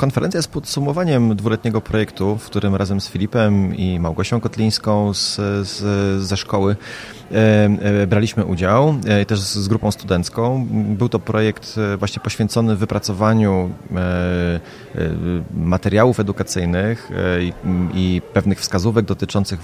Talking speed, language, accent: 130 wpm, Polish, native